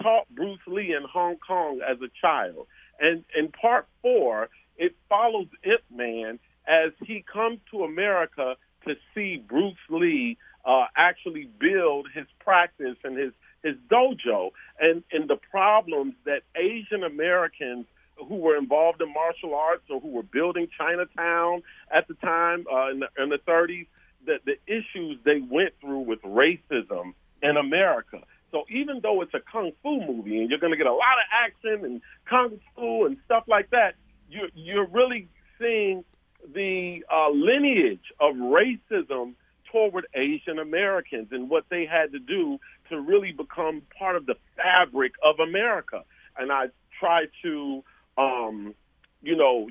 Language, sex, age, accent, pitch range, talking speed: English, male, 40-59, American, 145-235 Hz, 155 wpm